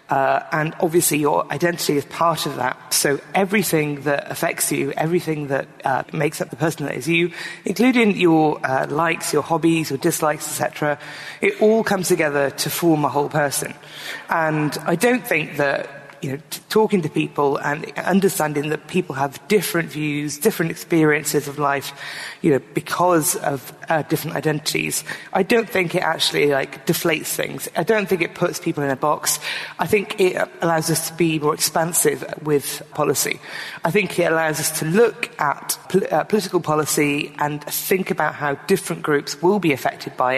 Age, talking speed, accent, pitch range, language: 30-49, 180 wpm, British, 145-175 Hz, English